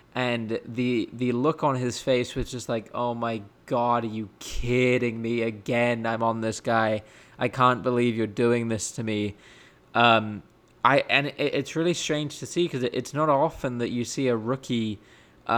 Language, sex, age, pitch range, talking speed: English, male, 20-39, 115-130 Hz, 190 wpm